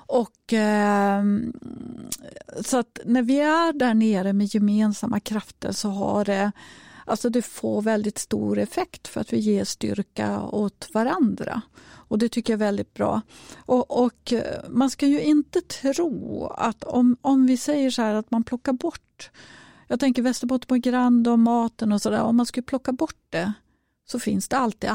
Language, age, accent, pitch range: Swedish, 40-59, native, 210-255 Hz